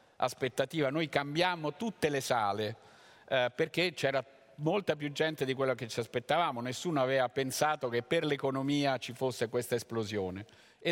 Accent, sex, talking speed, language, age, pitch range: native, male, 150 wpm, Italian, 50-69, 125-145 Hz